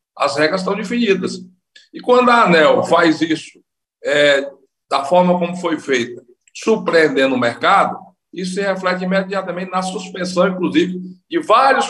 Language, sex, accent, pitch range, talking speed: Portuguese, male, Brazilian, 165-210 Hz, 140 wpm